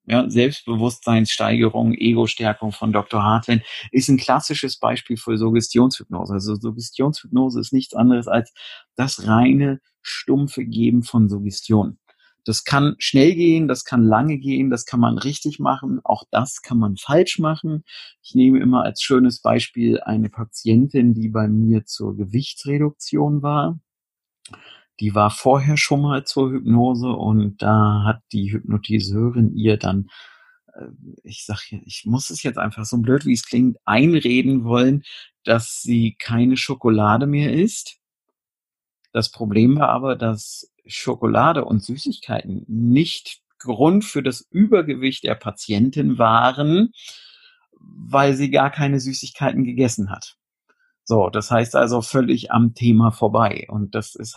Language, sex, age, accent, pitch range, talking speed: German, male, 50-69, German, 110-140 Hz, 140 wpm